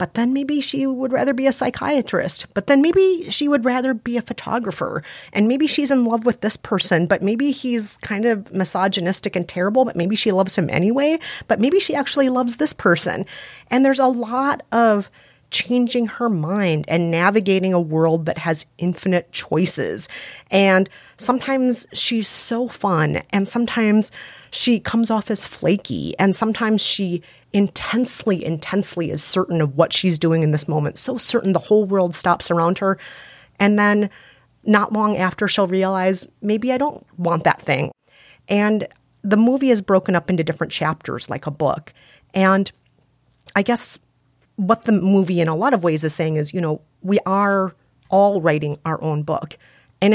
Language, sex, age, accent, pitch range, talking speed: English, female, 30-49, American, 175-235 Hz, 175 wpm